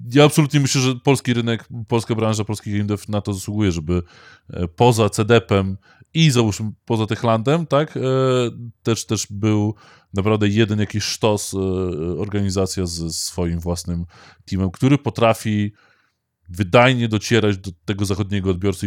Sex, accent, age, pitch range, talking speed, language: male, native, 20-39, 90-115 Hz, 130 wpm, Polish